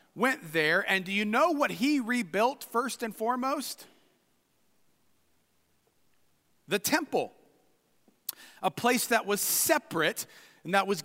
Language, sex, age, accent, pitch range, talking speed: English, male, 40-59, American, 215-285 Hz, 120 wpm